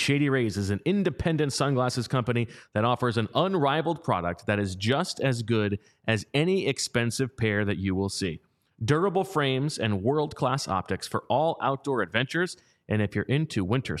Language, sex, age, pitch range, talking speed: English, male, 30-49, 110-150 Hz, 165 wpm